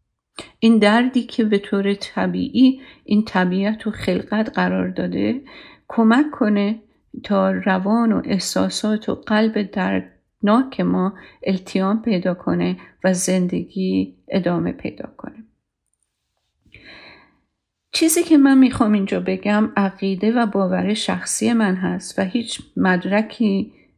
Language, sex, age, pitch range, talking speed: Persian, female, 50-69, 185-230 Hz, 115 wpm